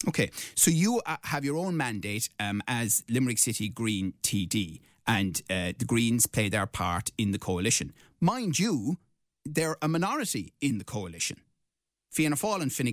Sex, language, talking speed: male, English, 165 wpm